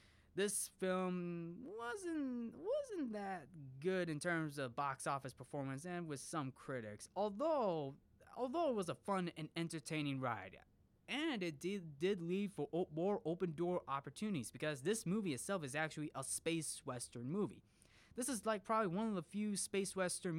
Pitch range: 130-185 Hz